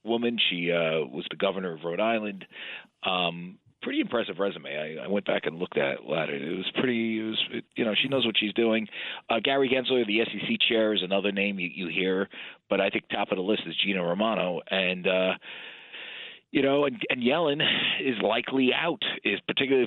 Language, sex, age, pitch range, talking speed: English, male, 40-59, 95-115 Hz, 195 wpm